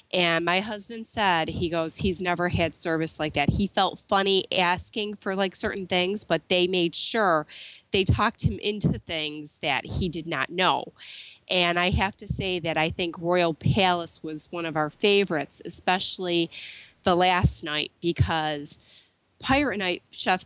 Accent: American